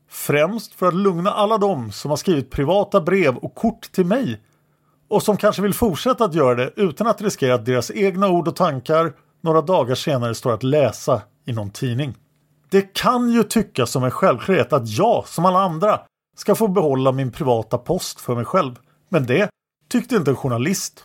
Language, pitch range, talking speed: Swedish, 140-205 Hz, 195 wpm